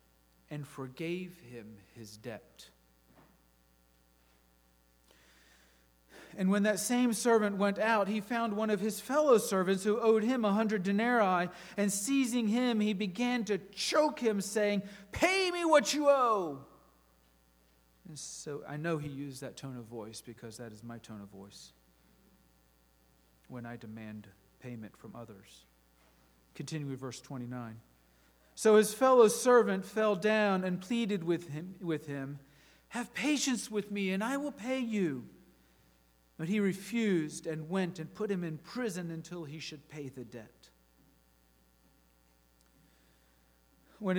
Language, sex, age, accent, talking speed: English, male, 40-59, American, 140 wpm